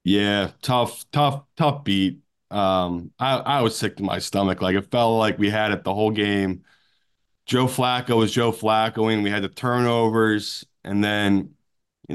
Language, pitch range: English, 100-125 Hz